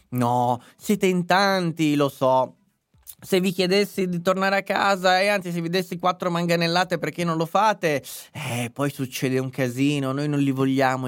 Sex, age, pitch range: male, 20-39, 125-170 Hz